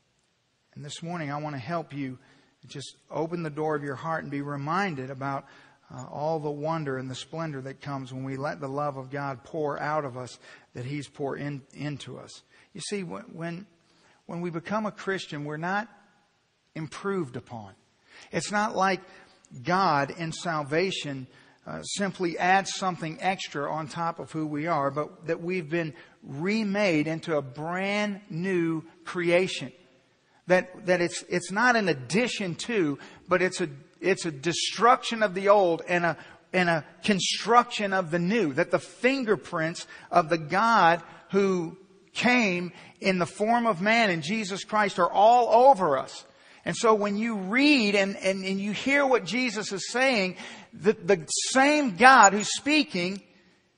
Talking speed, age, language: 165 wpm, 50-69, English